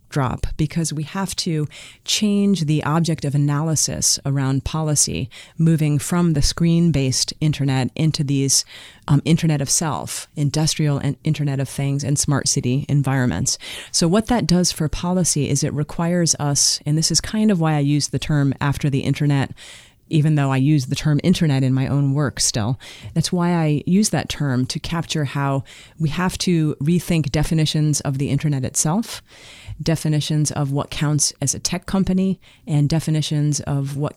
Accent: American